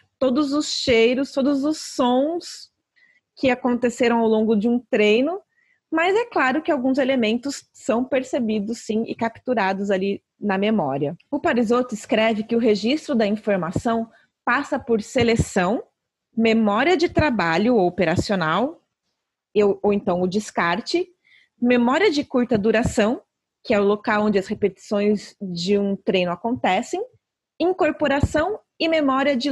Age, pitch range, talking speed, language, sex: 30-49, 210-285 Hz, 135 wpm, Portuguese, female